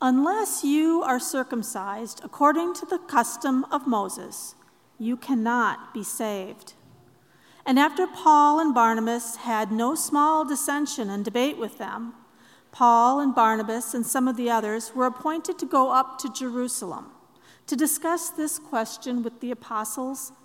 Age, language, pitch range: 50-69, English, 235-310 Hz